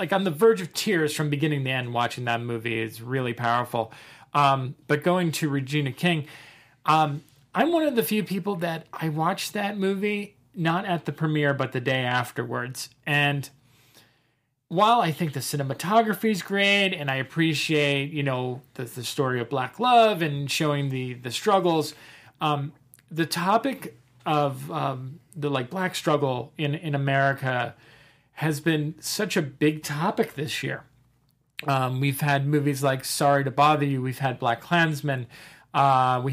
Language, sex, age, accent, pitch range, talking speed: English, male, 40-59, American, 130-165 Hz, 165 wpm